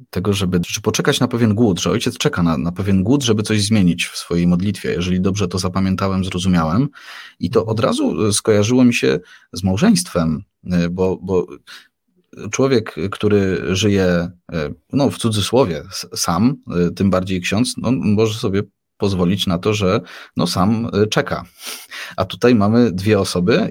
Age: 30-49